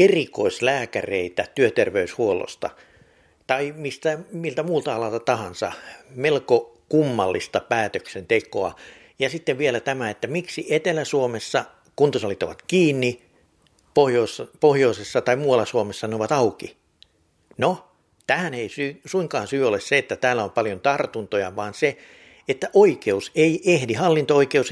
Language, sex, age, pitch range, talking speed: Finnish, male, 60-79, 115-165 Hz, 115 wpm